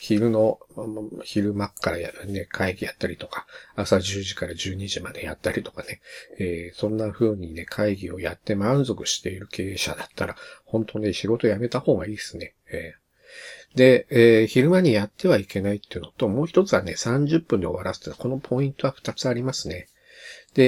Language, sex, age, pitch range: Japanese, male, 50-69, 100-140 Hz